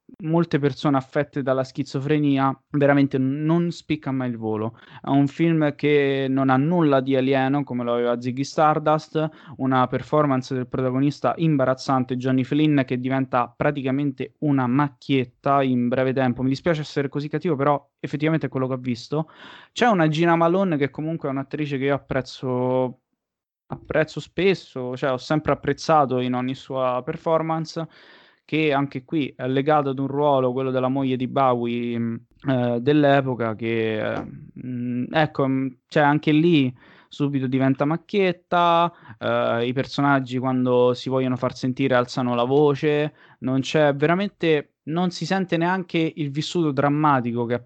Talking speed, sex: 150 wpm, male